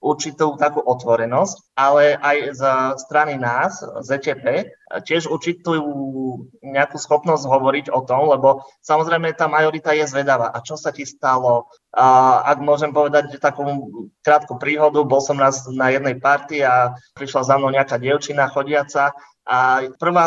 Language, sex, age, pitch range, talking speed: Slovak, male, 20-39, 135-155 Hz, 145 wpm